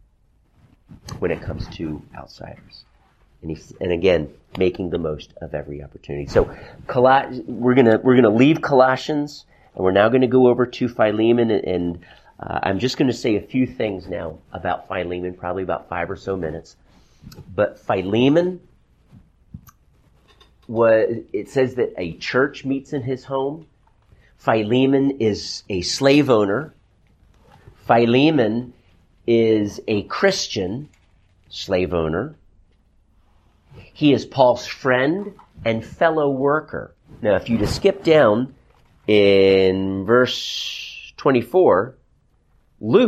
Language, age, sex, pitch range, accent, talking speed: English, 40-59, male, 90-130 Hz, American, 125 wpm